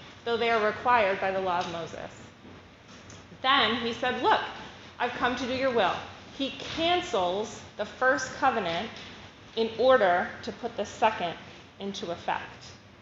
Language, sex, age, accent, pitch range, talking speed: English, female, 30-49, American, 185-230 Hz, 145 wpm